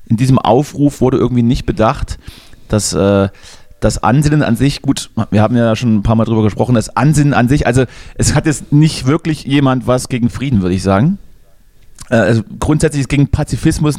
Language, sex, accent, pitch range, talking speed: German, male, German, 115-145 Hz, 190 wpm